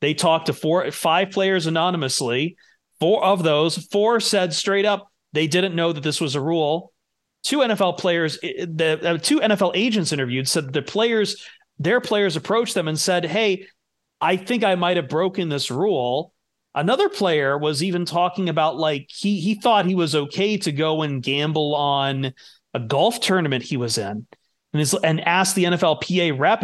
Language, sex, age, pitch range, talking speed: English, male, 30-49, 145-195 Hz, 180 wpm